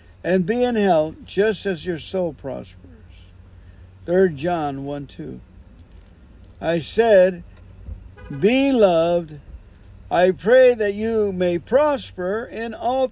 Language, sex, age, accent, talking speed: English, male, 50-69, American, 110 wpm